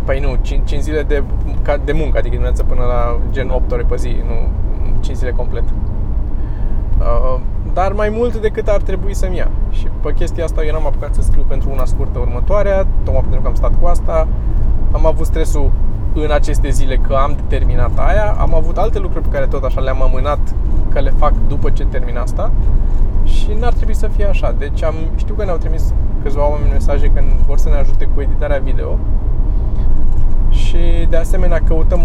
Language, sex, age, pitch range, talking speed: Romanian, male, 20-39, 85-105 Hz, 195 wpm